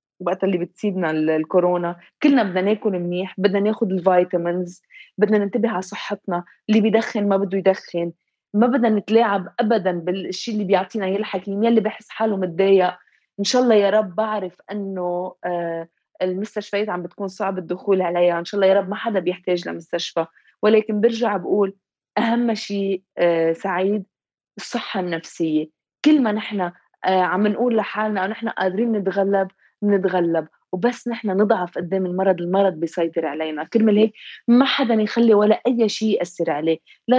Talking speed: 150 wpm